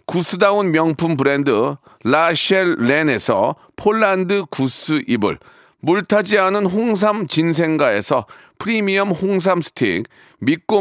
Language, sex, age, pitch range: Korean, male, 40-59, 160-210 Hz